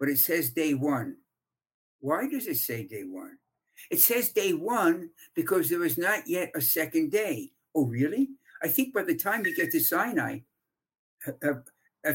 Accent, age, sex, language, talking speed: American, 60-79, male, English, 175 wpm